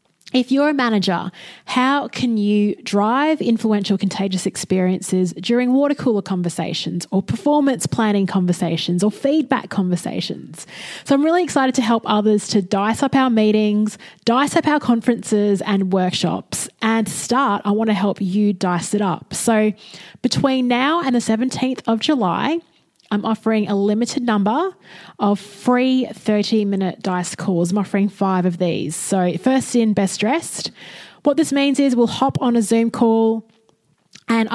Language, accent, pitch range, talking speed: English, Australian, 200-245 Hz, 155 wpm